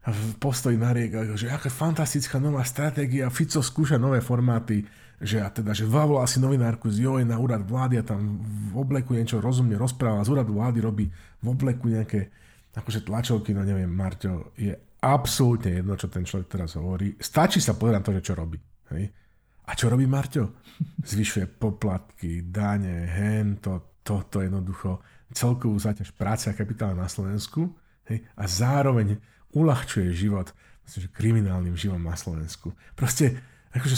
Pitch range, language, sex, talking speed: 105-135 Hz, Slovak, male, 155 wpm